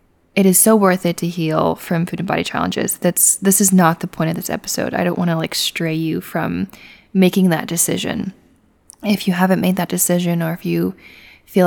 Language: English